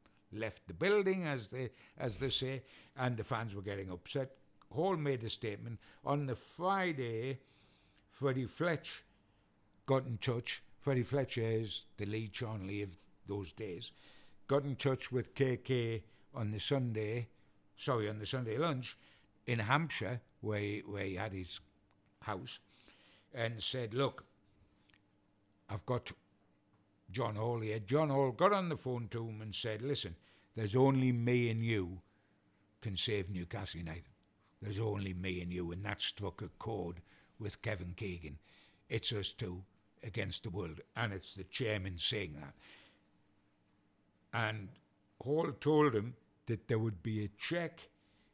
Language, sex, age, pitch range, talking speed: English, male, 60-79, 100-125 Hz, 150 wpm